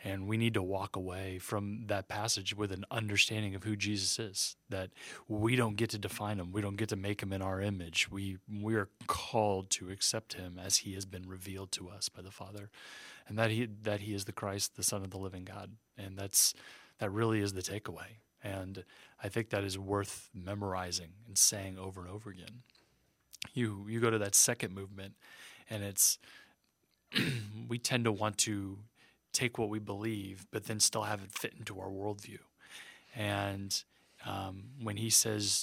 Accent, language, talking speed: American, English, 195 wpm